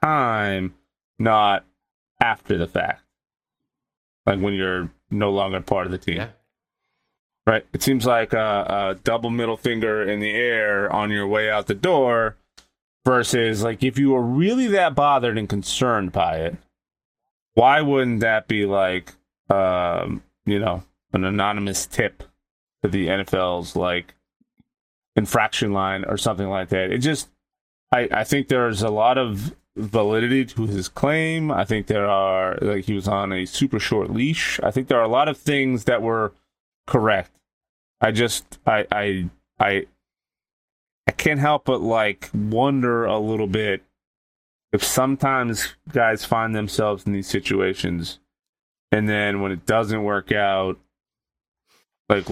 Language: English